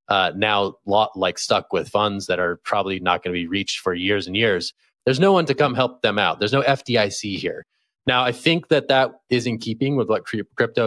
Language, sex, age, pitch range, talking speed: English, male, 30-49, 100-130 Hz, 235 wpm